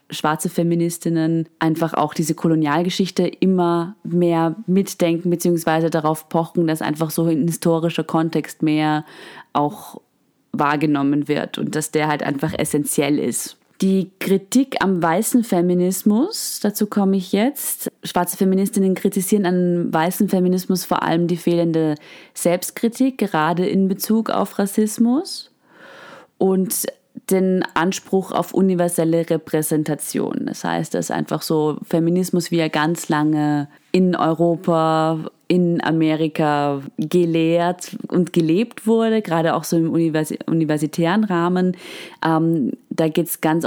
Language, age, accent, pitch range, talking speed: German, 20-39, German, 160-190 Hz, 120 wpm